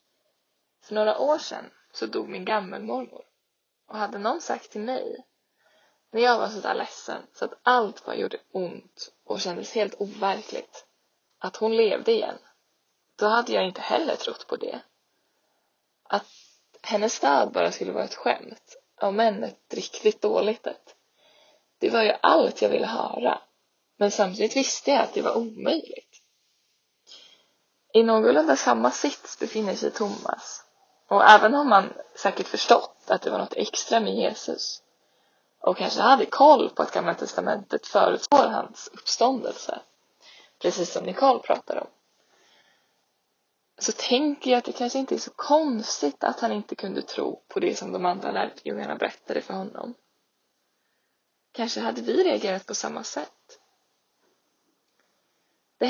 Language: Swedish